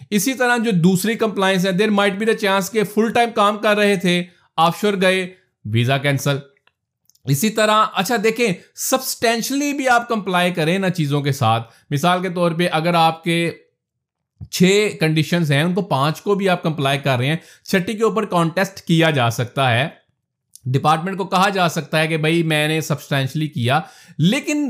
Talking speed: 175 wpm